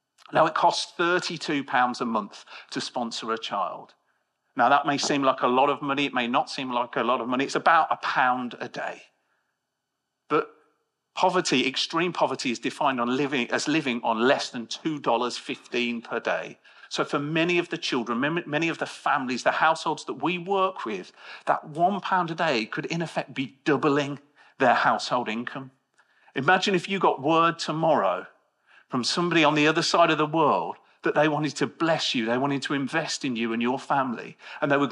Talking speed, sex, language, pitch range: 190 wpm, male, English, 125-165 Hz